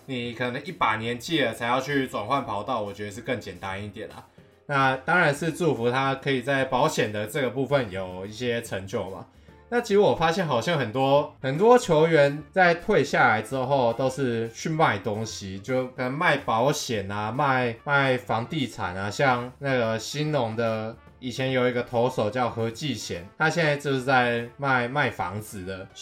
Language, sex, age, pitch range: Chinese, male, 20-39, 115-150 Hz